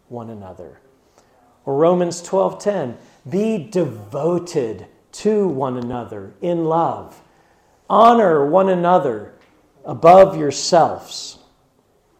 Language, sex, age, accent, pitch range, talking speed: English, male, 50-69, American, 140-210 Hz, 85 wpm